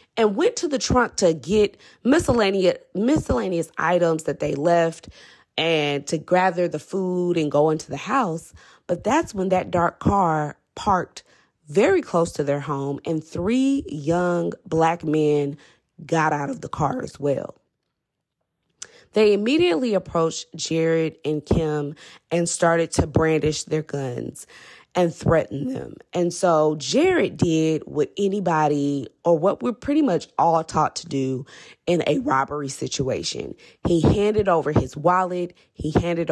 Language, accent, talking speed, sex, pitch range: English, American, 145 wpm, female, 150-180 Hz